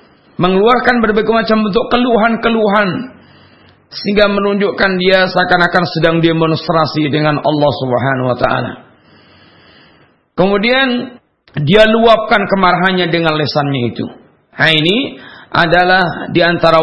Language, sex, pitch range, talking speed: Malay, male, 155-200 Hz, 100 wpm